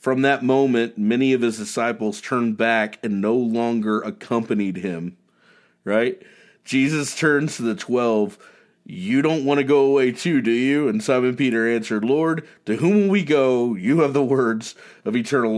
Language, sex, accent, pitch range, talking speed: English, male, American, 110-135 Hz, 175 wpm